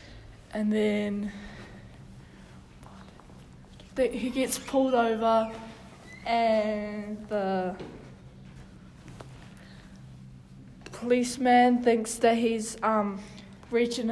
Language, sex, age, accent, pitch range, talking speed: English, female, 10-29, Australian, 190-225 Hz, 60 wpm